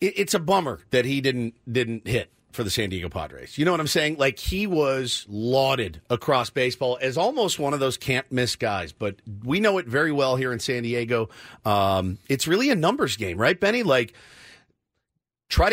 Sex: male